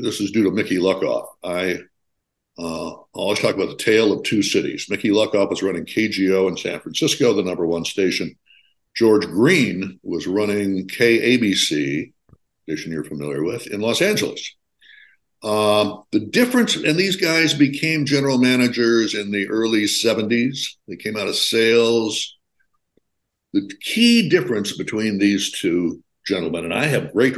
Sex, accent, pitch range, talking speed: male, American, 100-165 Hz, 155 wpm